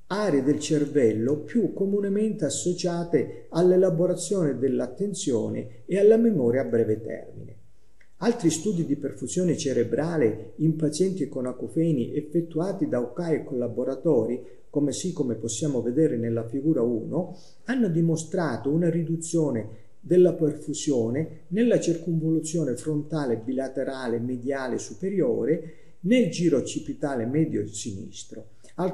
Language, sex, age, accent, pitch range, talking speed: Italian, male, 40-59, native, 130-175 Hz, 115 wpm